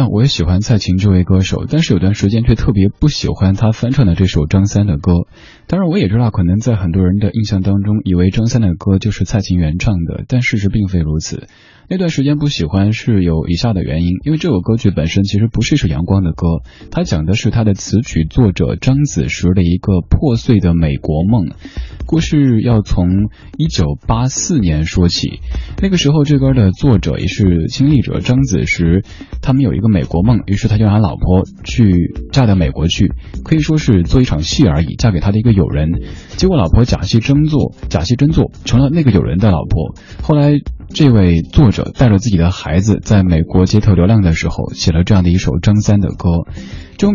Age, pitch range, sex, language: 20-39, 90-115 Hz, male, Chinese